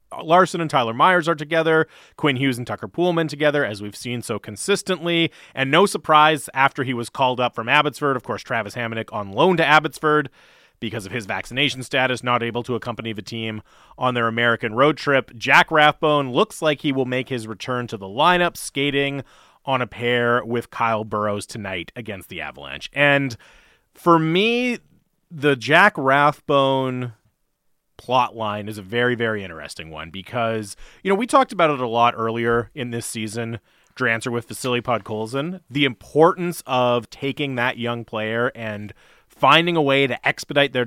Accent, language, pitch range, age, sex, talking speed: American, English, 115-150 Hz, 30-49, male, 175 wpm